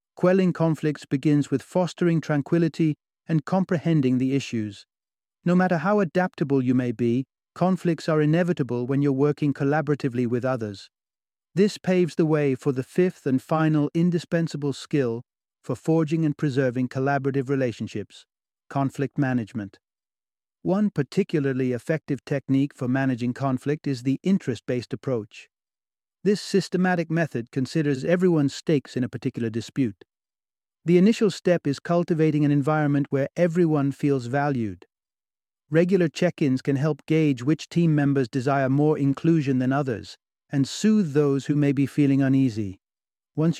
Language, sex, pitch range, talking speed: English, male, 130-165 Hz, 135 wpm